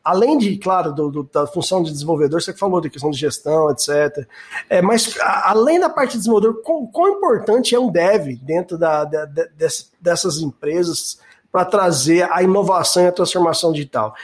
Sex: male